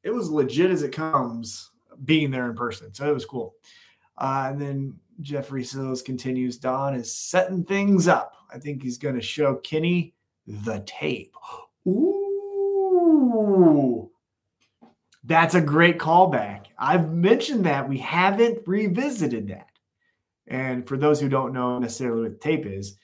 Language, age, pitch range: English, 30-49, 120-170 Hz